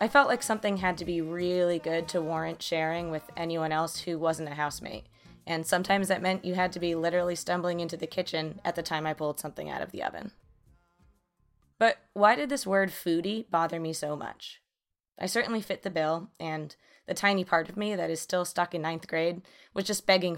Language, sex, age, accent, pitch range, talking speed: English, female, 20-39, American, 160-195 Hz, 215 wpm